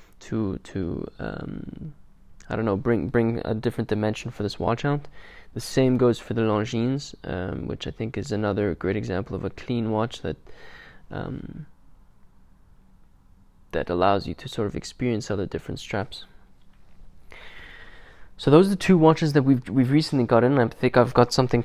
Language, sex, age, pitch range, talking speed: English, male, 20-39, 115-130 Hz, 170 wpm